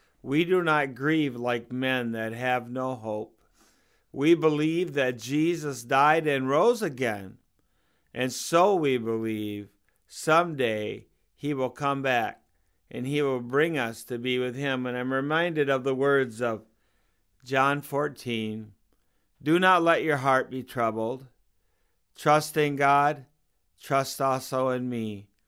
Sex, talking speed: male, 140 wpm